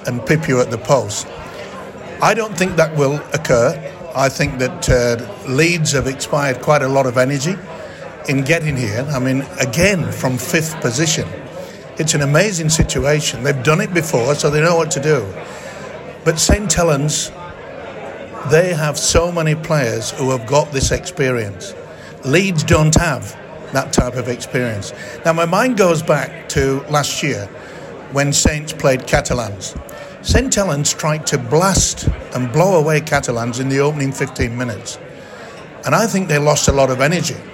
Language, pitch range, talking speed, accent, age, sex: English, 130-160 Hz, 165 wpm, British, 60-79, male